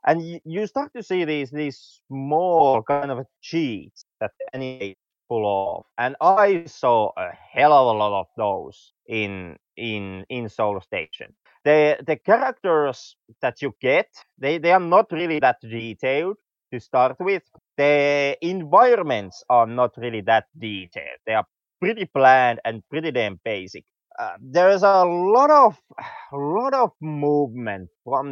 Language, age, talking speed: English, 30-49, 155 wpm